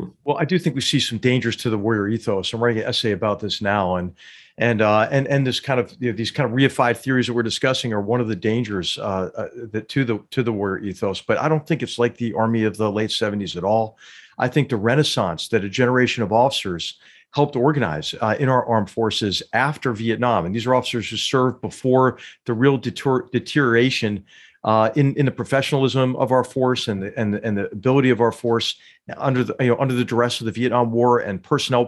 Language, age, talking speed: English, 50-69, 235 wpm